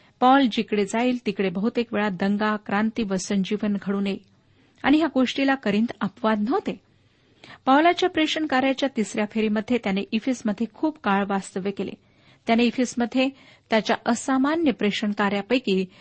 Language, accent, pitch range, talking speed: Marathi, native, 205-260 Hz, 110 wpm